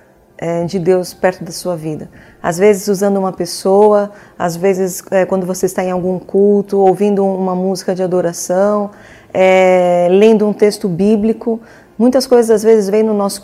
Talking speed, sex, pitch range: 165 wpm, female, 185-225 Hz